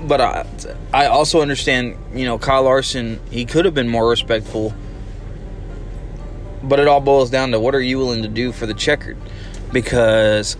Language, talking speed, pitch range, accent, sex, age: English, 175 wpm, 105-135 Hz, American, male, 20-39